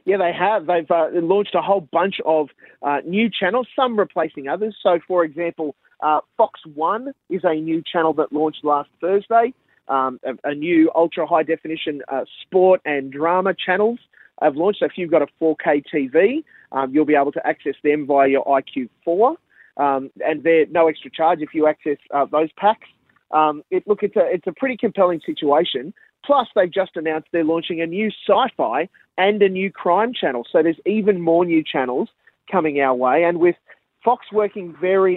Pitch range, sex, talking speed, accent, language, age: 150-190 Hz, male, 185 wpm, Australian, English, 30-49